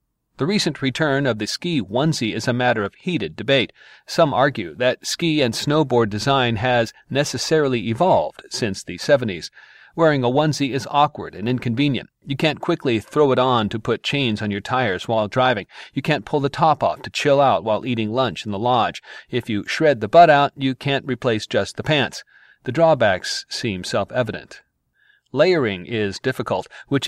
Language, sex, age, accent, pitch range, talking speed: English, male, 40-59, American, 115-140 Hz, 180 wpm